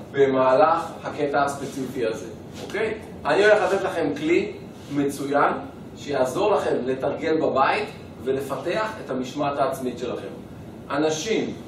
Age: 40-59